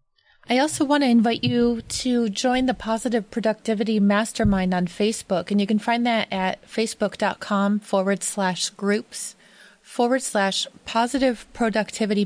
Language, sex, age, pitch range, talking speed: English, female, 20-39, 200-245 Hz, 135 wpm